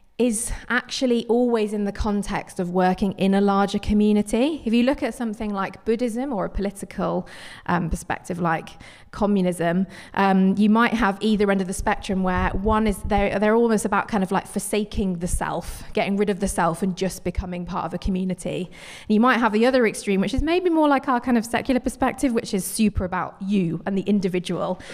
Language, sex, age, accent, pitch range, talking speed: English, female, 20-39, British, 185-225 Hz, 200 wpm